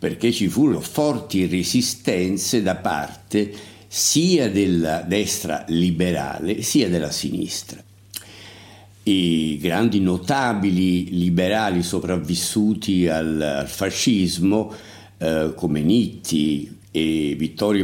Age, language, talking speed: 60-79, Italian, 85 wpm